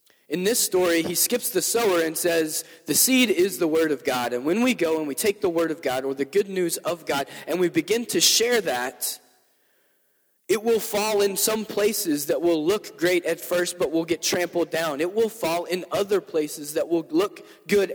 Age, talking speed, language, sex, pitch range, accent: 20-39, 220 wpm, English, male, 160-210 Hz, American